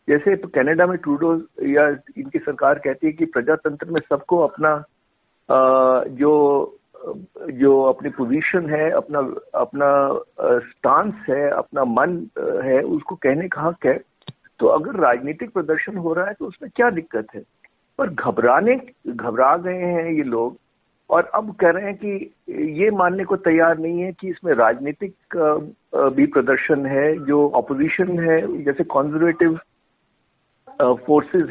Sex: male